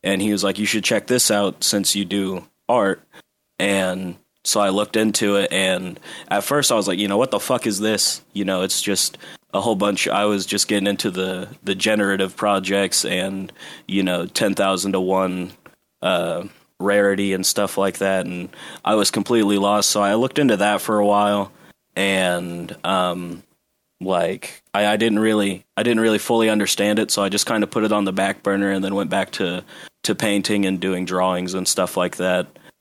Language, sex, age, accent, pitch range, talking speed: English, male, 30-49, American, 90-105 Hz, 205 wpm